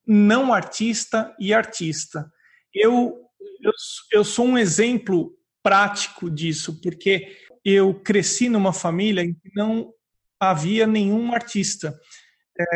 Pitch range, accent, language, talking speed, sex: 190-240 Hz, Brazilian, Portuguese, 115 wpm, male